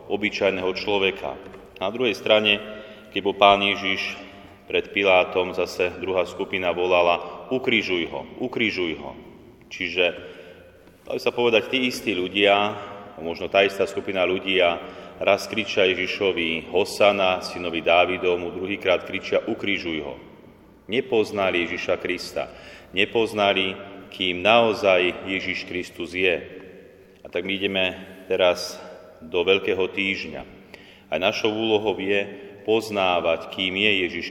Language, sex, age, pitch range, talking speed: Slovak, male, 30-49, 90-100 Hz, 115 wpm